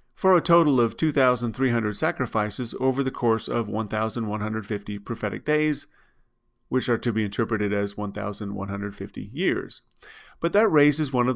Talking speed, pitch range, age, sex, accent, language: 135 wpm, 105-130 Hz, 40-59, male, American, English